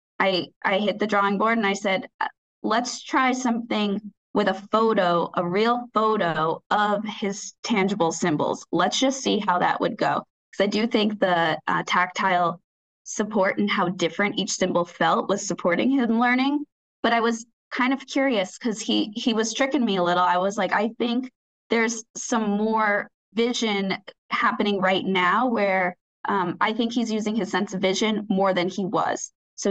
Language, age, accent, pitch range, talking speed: English, 20-39, American, 185-225 Hz, 180 wpm